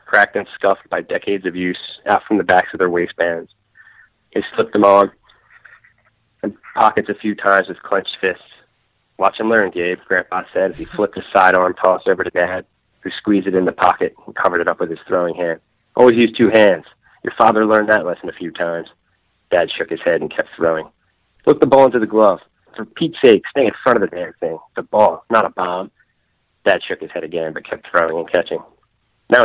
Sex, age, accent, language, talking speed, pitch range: male, 30-49, American, English, 215 wpm, 90-100 Hz